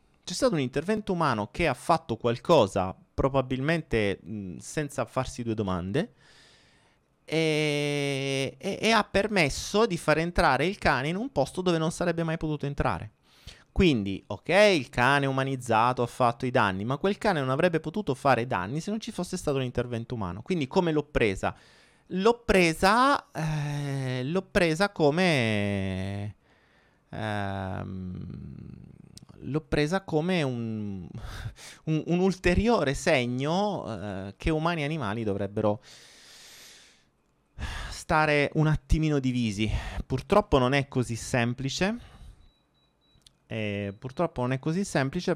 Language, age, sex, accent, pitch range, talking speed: Italian, 30-49, male, native, 105-160 Hz, 130 wpm